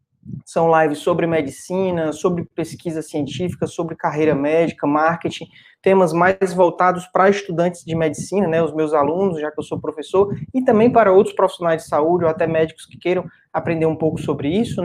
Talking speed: 180 wpm